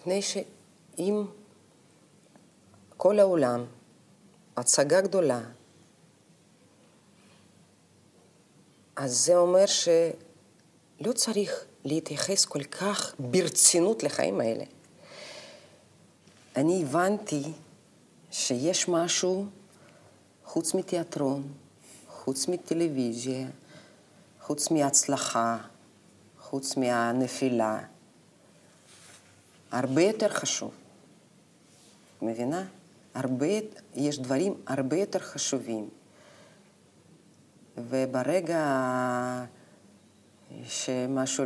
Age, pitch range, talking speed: 40-59, 130-180 Hz, 60 wpm